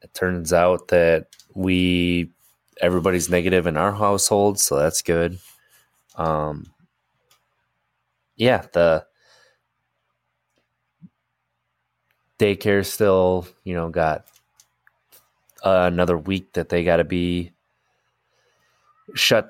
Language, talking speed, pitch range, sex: English, 90 wpm, 85-95 Hz, male